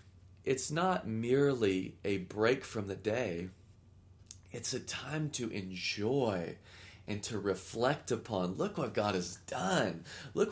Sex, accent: male, American